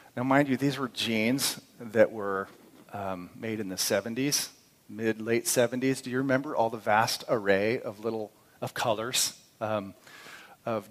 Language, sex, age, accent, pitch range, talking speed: English, male, 40-59, American, 110-130 Hz, 155 wpm